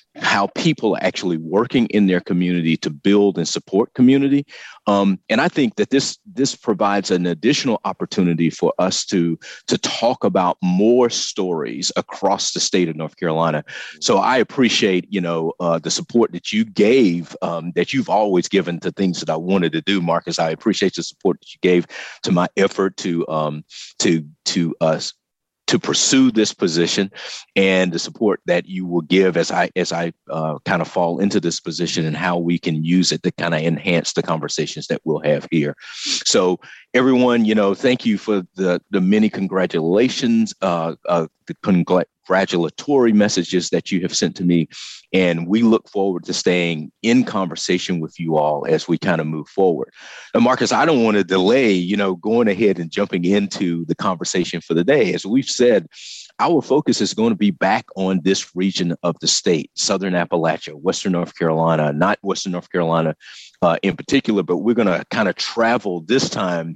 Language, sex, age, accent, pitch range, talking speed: English, male, 40-59, American, 85-100 Hz, 185 wpm